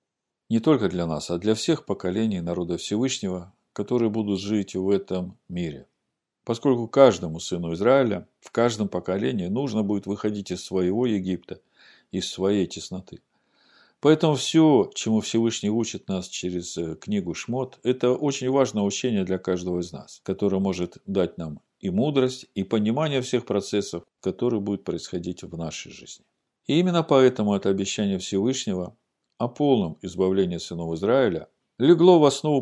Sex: male